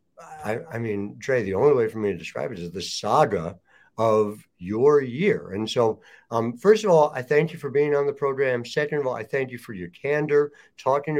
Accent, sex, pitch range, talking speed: American, male, 105-150 Hz, 225 wpm